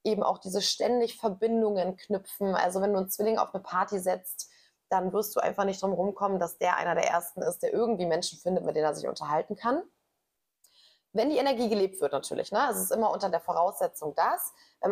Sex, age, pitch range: female, 20-39, 185-220 Hz